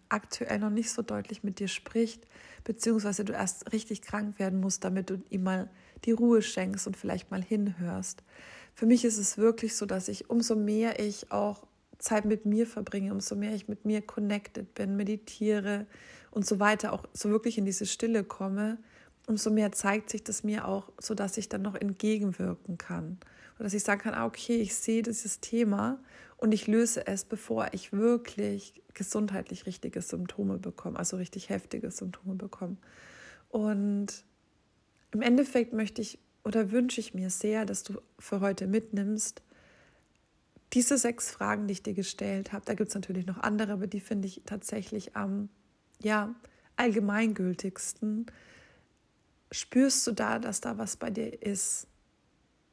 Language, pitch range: German, 195-225 Hz